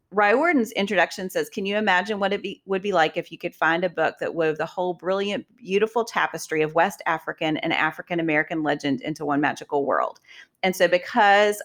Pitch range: 160-200 Hz